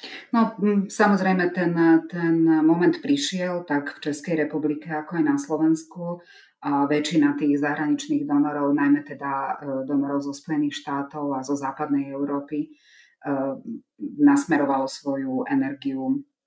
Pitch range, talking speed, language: 140-180 Hz, 115 wpm, Czech